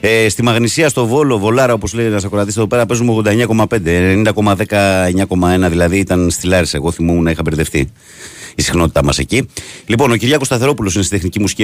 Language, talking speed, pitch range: Greek, 185 wpm, 90-115 Hz